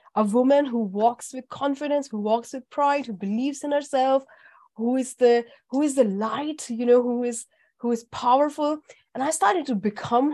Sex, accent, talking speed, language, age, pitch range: female, Indian, 190 wpm, English, 30-49, 205-255 Hz